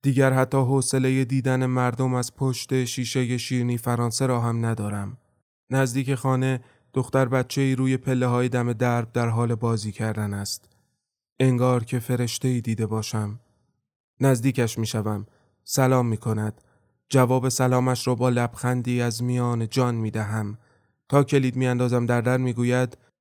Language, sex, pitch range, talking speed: Persian, male, 115-140 Hz, 140 wpm